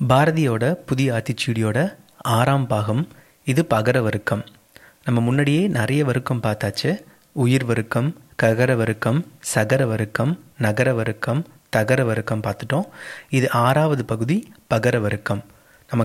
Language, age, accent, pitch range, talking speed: English, 30-49, Indian, 110-145 Hz, 140 wpm